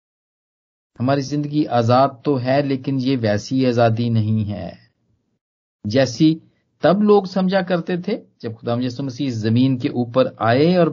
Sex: male